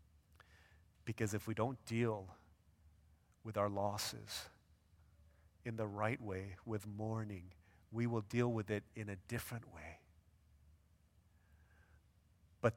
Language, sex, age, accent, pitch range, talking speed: English, male, 40-59, American, 90-125 Hz, 115 wpm